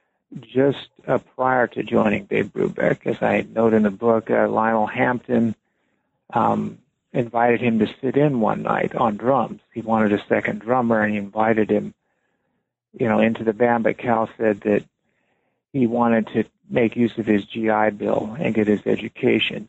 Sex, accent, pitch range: male, American, 110-125 Hz